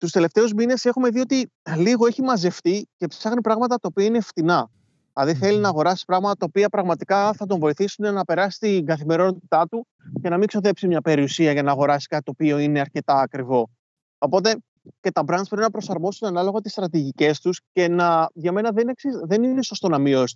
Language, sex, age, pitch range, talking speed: Greek, male, 30-49, 160-210 Hz, 200 wpm